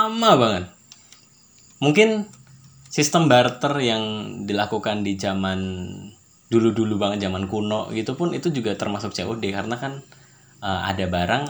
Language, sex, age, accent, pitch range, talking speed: Indonesian, male, 20-39, native, 95-125 Hz, 125 wpm